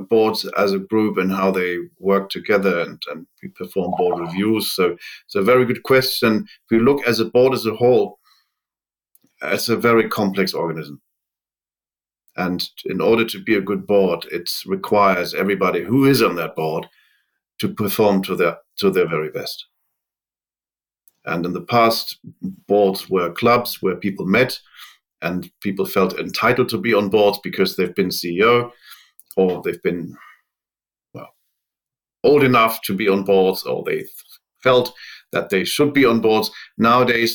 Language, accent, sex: English, German, male